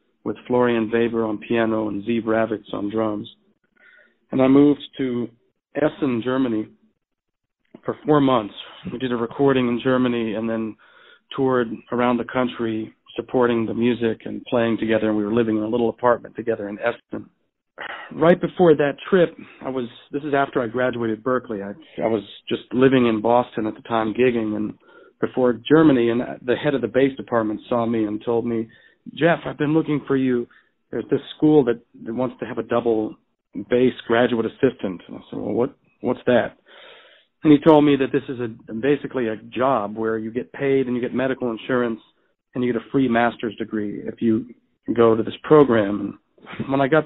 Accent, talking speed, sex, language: American, 190 wpm, male, English